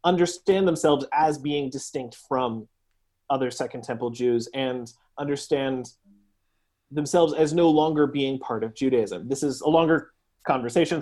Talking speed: 135 wpm